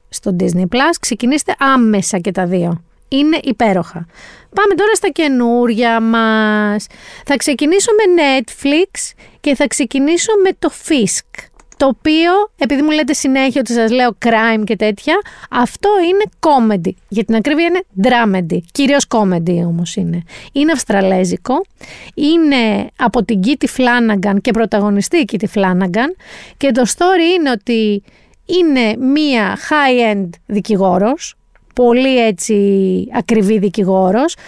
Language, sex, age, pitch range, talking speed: Greek, female, 30-49, 220-310 Hz, 130 wpm